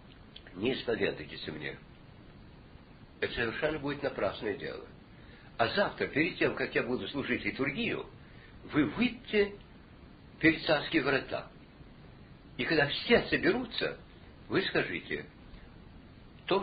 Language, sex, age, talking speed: Russian, male, 60-79, 105 wpm